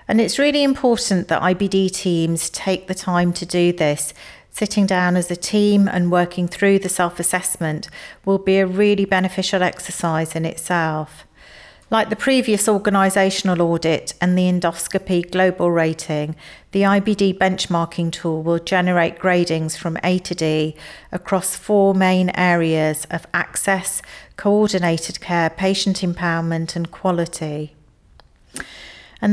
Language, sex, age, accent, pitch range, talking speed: English, female, 40-59, British, 165-195 Hz, 135 wpm